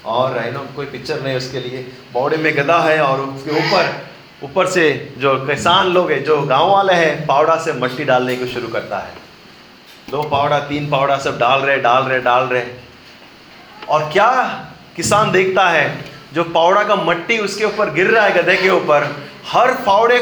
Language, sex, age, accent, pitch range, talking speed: Hindi, male, 30-49, native, 150-245 Hz, 185 wpm